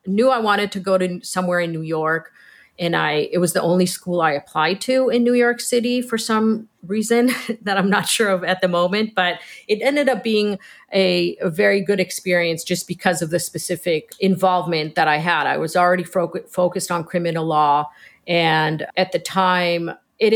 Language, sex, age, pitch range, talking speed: English, female, 40-59, 155-190 Hz, 195 wpm